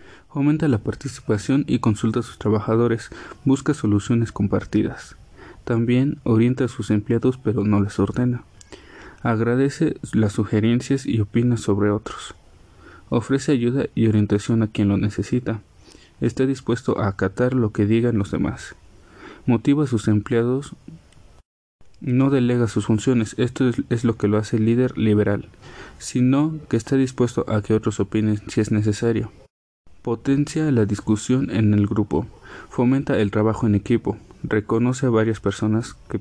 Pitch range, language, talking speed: 105-125 Hz, Spanish, 145 wpm